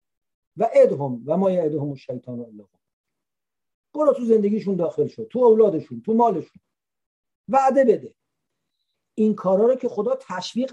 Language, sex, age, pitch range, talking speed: English, male, 50-69, 155-225 Hz, 140 wpm